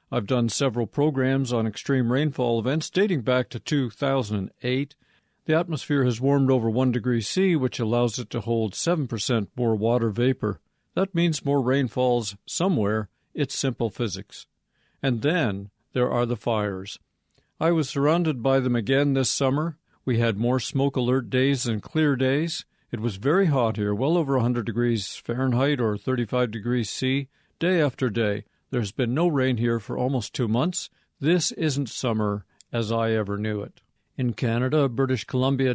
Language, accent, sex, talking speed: English, American, male, 165 wpm